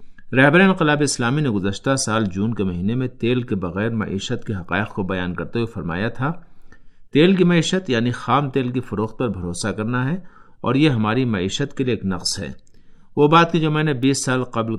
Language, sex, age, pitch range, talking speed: Urdu, male, 50-69, 105-145 Hz, 205 wpm